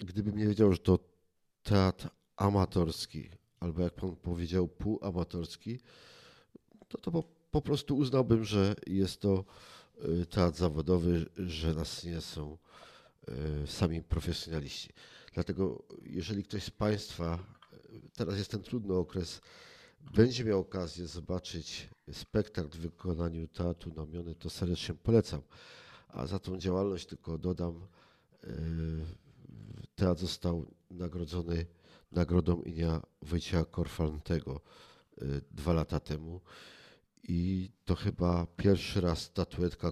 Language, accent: Polish, native